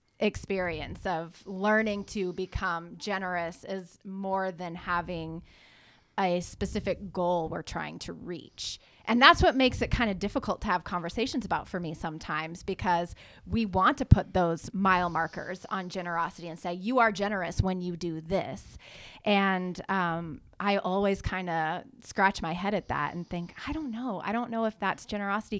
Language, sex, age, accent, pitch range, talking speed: English, female, 20-39, American, 175-220 Hz, 170 wpm